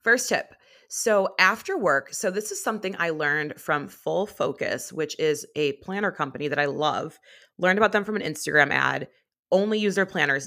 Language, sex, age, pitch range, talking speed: English, female, 30-49, 150-190 Hz, 190 wpm